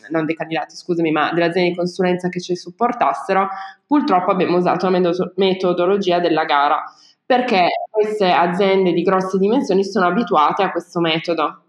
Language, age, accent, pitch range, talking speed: Italian, 20-39, native, 175-200 Hz, 155 wpm